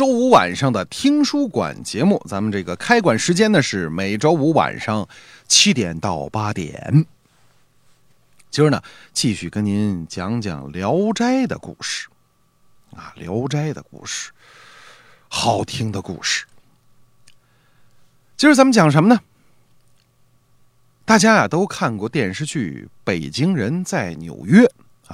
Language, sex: Chinese, male